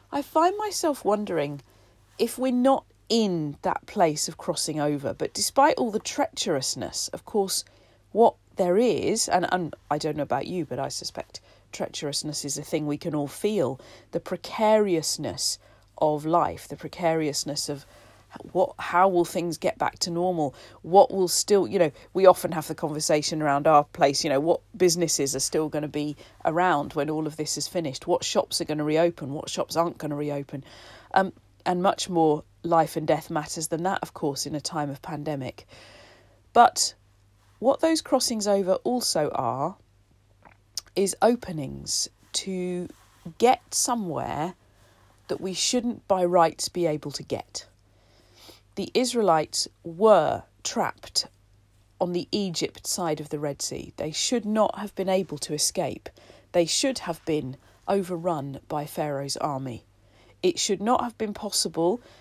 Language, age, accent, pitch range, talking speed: English, 40-59, British, 140-185 Hz, 165 wpm